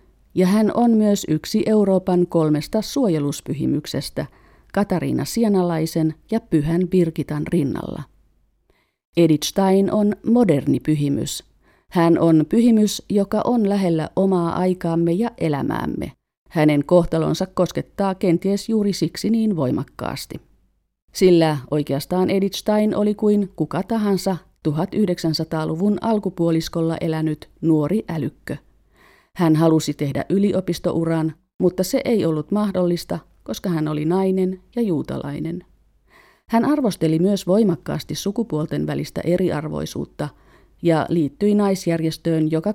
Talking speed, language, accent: 105 wpm, Finnish, native